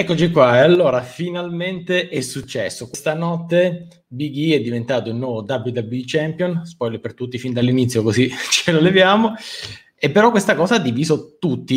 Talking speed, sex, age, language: 170 wpm, male, 30-49, Italian